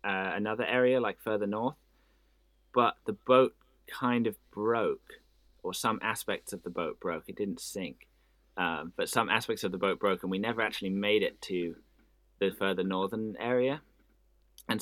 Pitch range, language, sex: 95-120 Hz, English, male